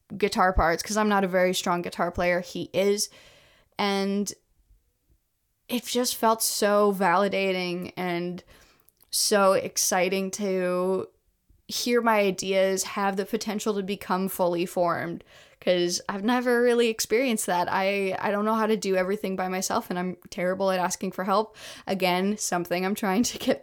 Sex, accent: female, American